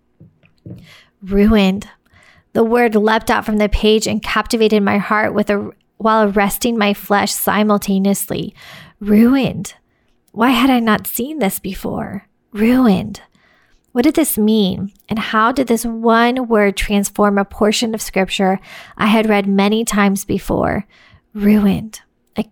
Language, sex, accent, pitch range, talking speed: English, female, American, 200-225 Hz, 135 wpm